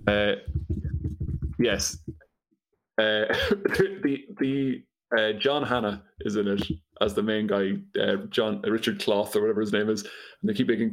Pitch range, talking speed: 105-150 Hz, 160 wpm